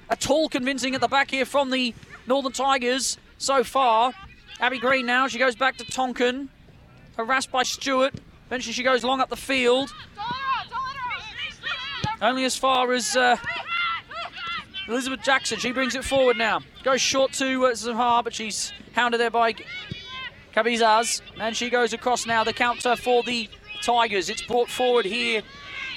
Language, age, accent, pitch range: English, 20-39, British, 195-255 Hz